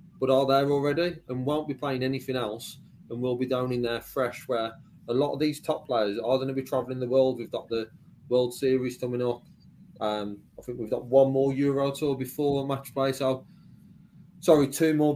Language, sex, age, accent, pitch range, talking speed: English, male, 30-49, British, 120-145 Hz, 220 wpm